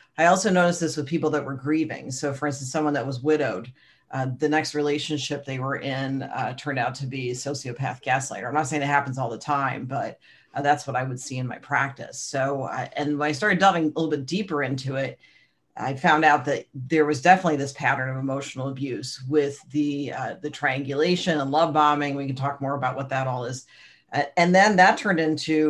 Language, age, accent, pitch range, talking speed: English, 40-59, American, 135-150 Hz, 220 wpm